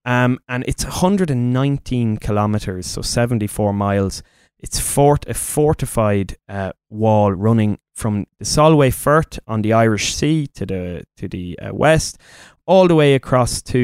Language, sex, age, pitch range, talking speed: English, male, 20-39, 100-135 Hz, 145 wpm